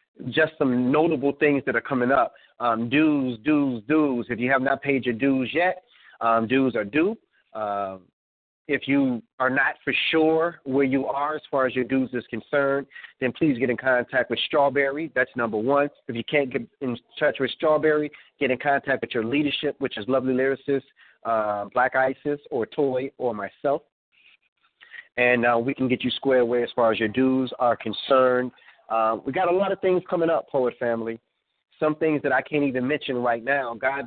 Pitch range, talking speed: 120-145 Hz, 195 wpm